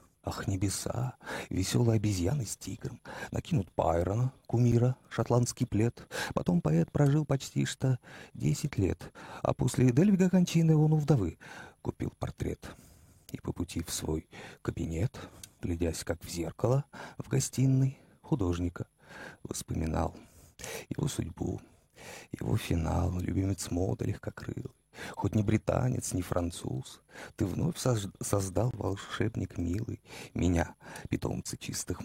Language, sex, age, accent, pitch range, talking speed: Russian, male, 40-59, native, 95-130 Hz, 115 wpm